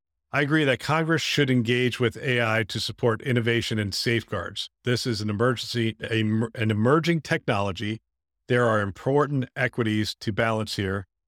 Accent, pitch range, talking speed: American, 105-120 Hz, 145 wpm